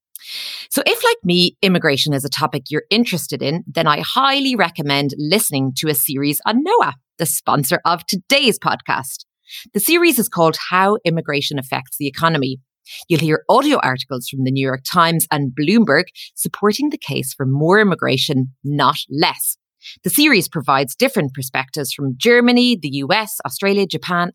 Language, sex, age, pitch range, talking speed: English, female, 30-49, 140-200 Hz, 160 wpm